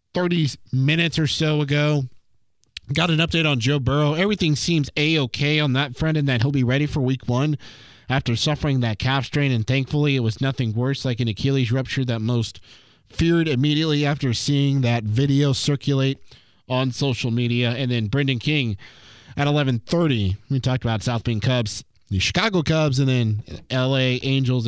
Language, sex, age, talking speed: English, male, 20-39, 175 wpm